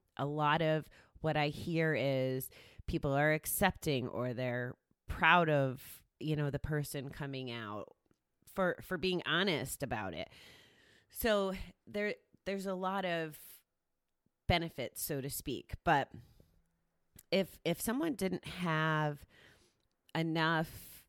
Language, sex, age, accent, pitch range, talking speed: English, female, 30-49, American, 130-165 Hz, 120 wpm